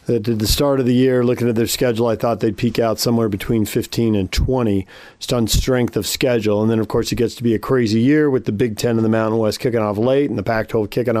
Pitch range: 110-140 Hz